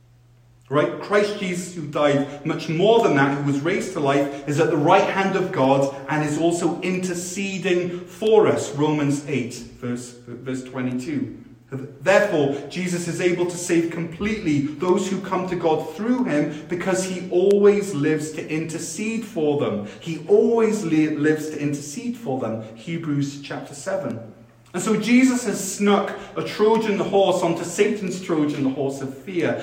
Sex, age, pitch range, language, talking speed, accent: male, 30-49, 130-185 Hz, English, 160 wpm, British